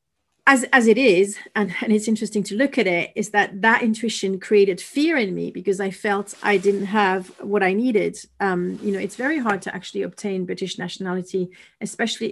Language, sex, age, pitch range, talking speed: English, female, 40-59, 185-225 Hz, 200 wpm